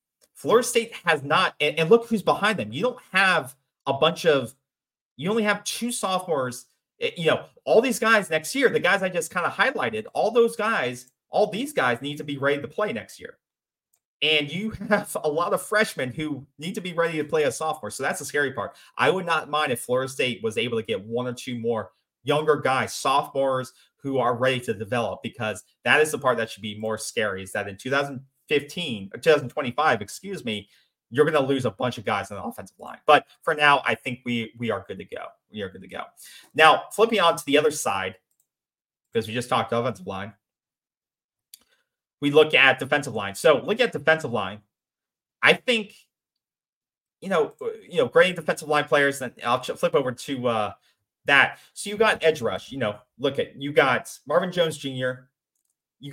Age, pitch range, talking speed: 30-49, 125-195 Hz, 205 wpm